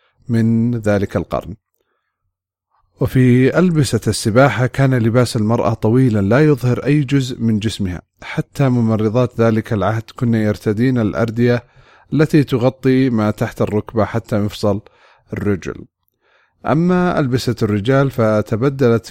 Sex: male